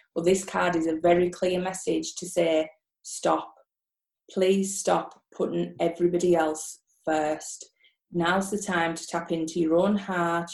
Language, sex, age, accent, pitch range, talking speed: English, female, 20-39, British, 165-190 Hz, 150 wpm